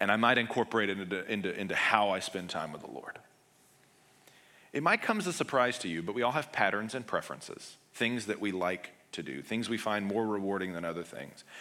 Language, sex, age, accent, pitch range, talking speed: English, male, 40-59, American, 115-175 Hz, 220 wpm